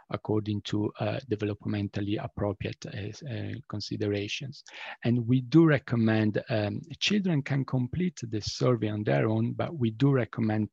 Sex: male